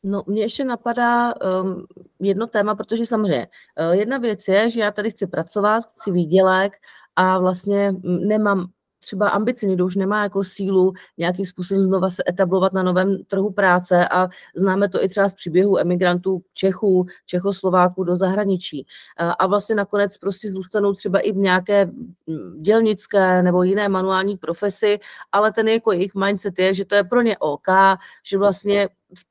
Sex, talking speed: female, 165 wpm